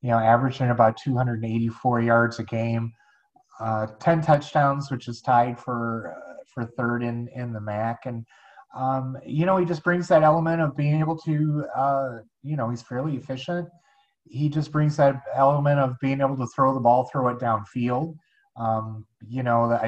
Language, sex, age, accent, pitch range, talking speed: English, male, 30-49, American, 115-135 Hz, 180 wpm